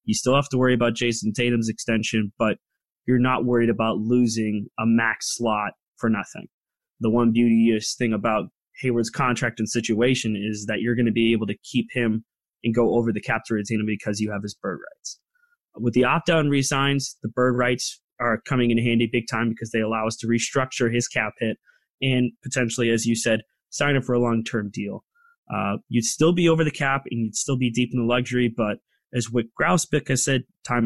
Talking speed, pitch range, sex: 210 wpm, 115-130 Hz, male